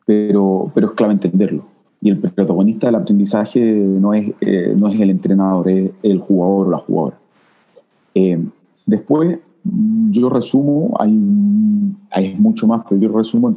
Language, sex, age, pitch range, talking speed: Spanish, male, 30-49, 100-145 Hz, 155 wpm